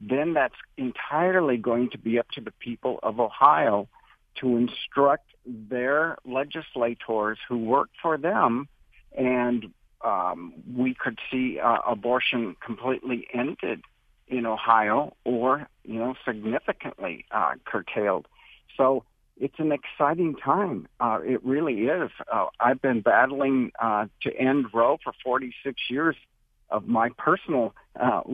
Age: 60-79